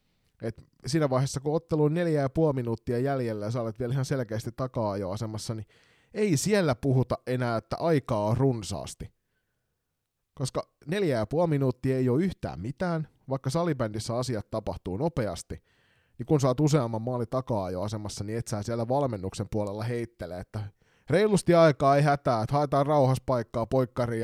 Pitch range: 105-135 Hz